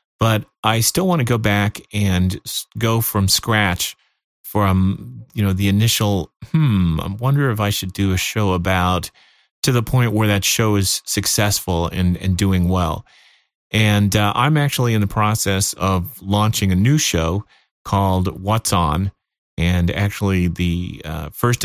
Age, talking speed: 30-49, 160 wpm